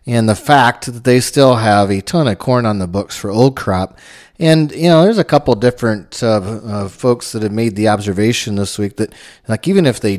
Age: 30-49